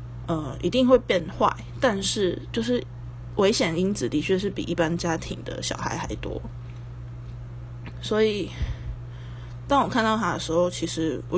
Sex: female